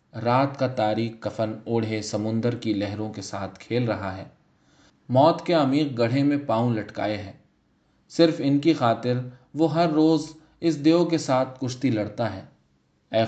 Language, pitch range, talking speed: Urdu, 110-145 Hz, 165 wpm